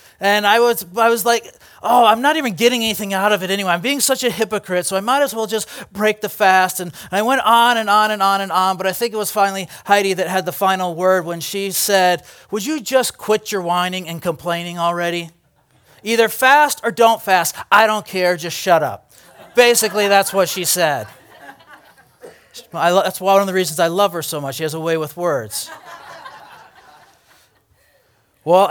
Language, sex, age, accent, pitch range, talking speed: English, male, 30-49, American, 160-205 Hz, 205 wpm